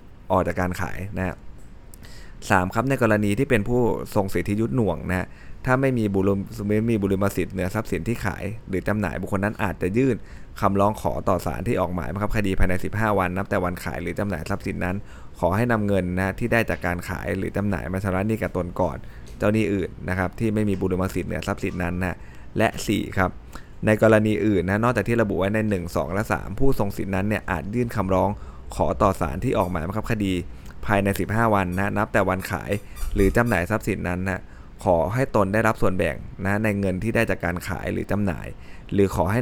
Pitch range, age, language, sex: 90-105 Hz, 20-39, Thai, male